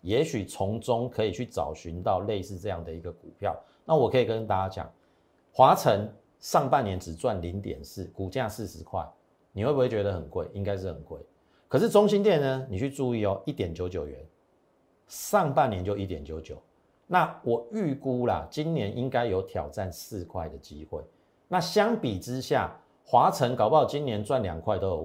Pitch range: 90-125 Hz